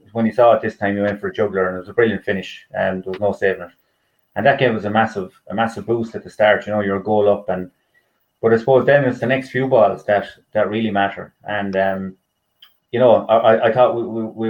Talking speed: 260 wpm